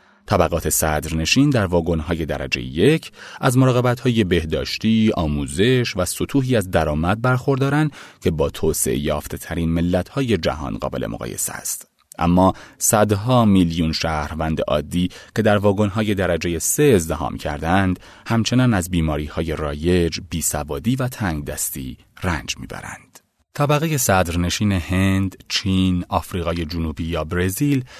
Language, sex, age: Persian, male, 30-49